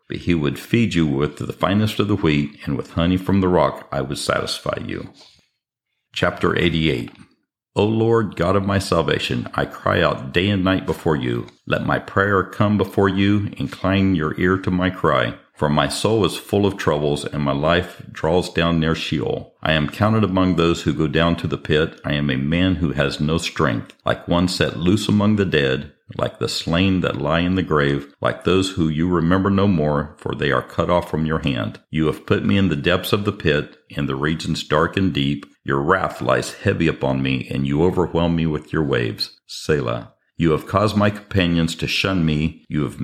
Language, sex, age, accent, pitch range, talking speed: English, male, 50-69, American, 75-95 Hz, 210 wpm